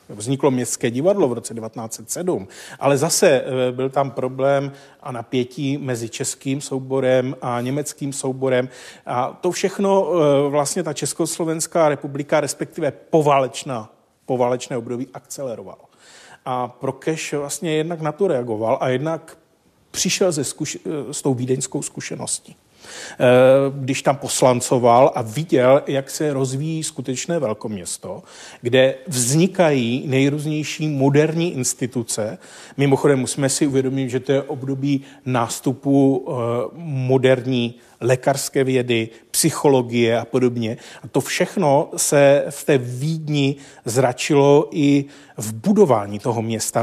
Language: Czech